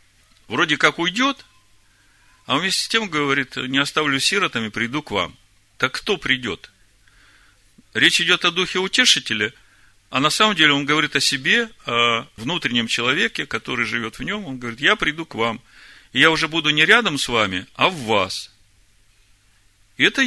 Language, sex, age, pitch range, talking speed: Russian, male, 40-59, 105-160 Hz, 165 wpm